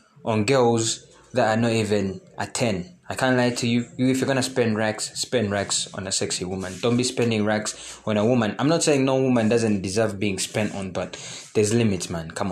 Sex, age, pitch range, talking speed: male, 20-39, 100-125 Hz, 225 wpm